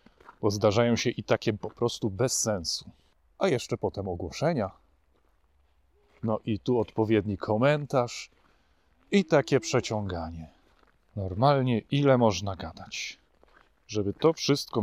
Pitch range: 105-150 Hz